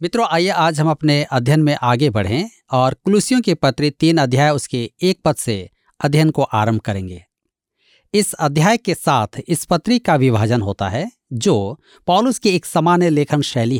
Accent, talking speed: native, 115 wpm